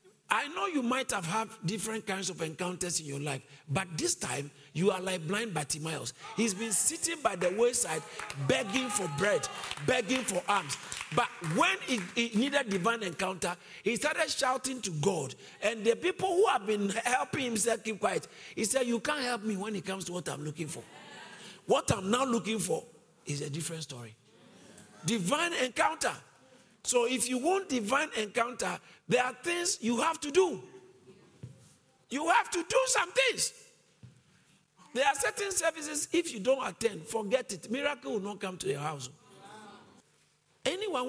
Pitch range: 165-255 Hz